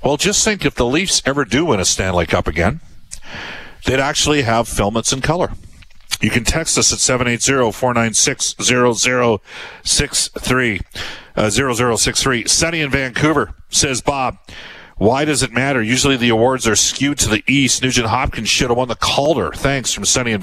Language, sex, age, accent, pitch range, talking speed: English, male, 50-69, American, 95-130 Hz, 160 wpm